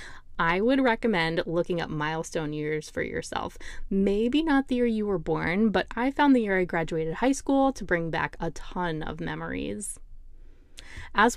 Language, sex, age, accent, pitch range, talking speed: English, female, 20-39, American, 170-230 Hz, 175 wpm